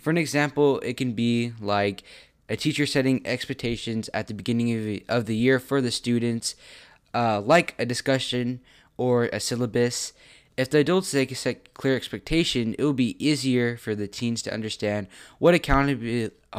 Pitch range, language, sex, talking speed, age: 110-135 Hz, English, male, 175 wpm, 20-39